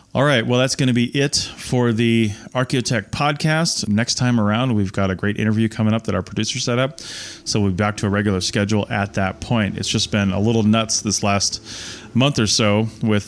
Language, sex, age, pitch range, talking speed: English, male, 30-49, 105-120 Hz, 225 wpm